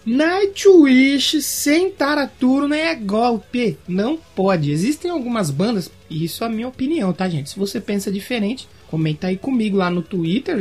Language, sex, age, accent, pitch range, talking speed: Portuguese, male, 20-39, Brazilian, 195-295 Hz, 165 wpm